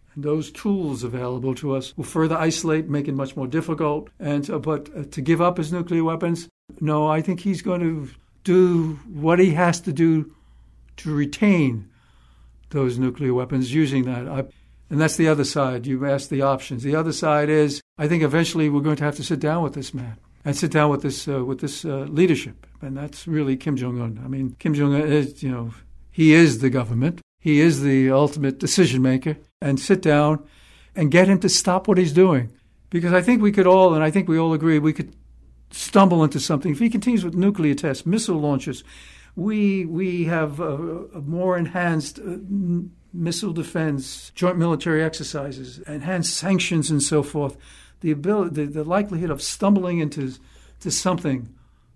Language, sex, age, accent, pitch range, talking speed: English, male, 60-79, American, 135-170 Hz, 190 wpm